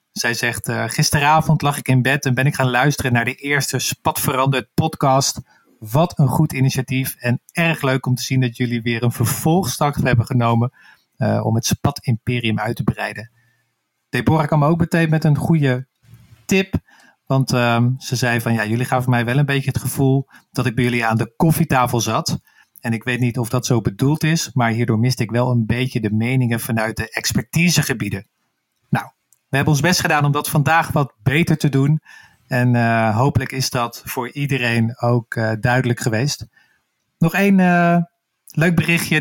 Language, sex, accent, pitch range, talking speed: Dutch, male, Dutch, 120-150 Hz, 190 wpm